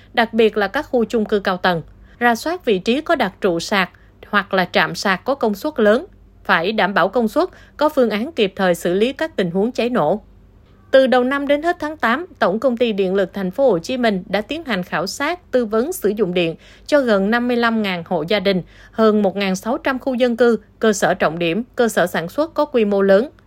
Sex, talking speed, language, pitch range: female, 235 wpm, Vietnamese, 195-255 Hz